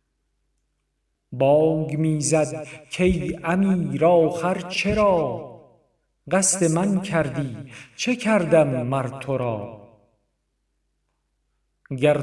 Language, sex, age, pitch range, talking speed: Persian, male, 50-69, 140-170 Hz, 80 wpm